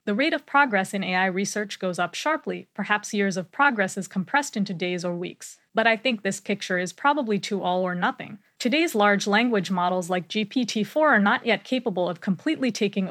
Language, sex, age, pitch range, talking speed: English, female, 20-39, 185-230 Hz, 200 wpm